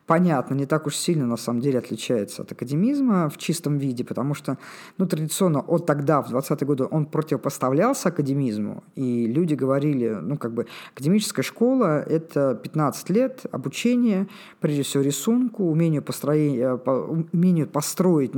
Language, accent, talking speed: Russian, native, 150 wpm